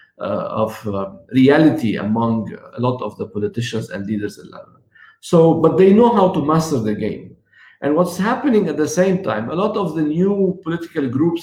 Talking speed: 195 wpm